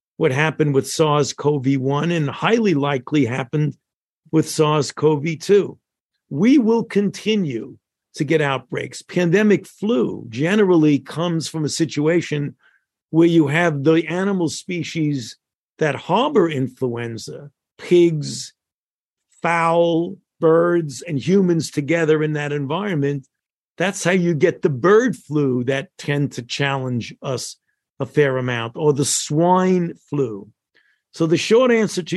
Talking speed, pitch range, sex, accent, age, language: 120 wpm, 140-175 Hz, male, American, 50-69, English